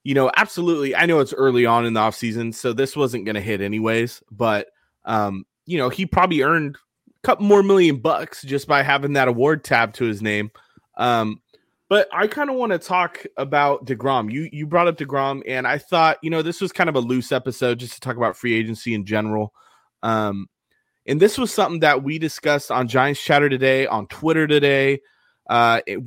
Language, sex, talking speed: English, male, 205 wpm